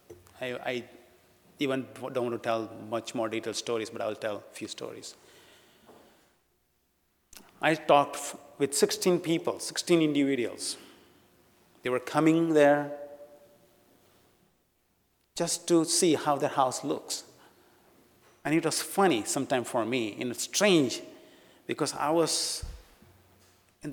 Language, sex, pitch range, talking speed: English, male, 135-200 Hz, 125 wpm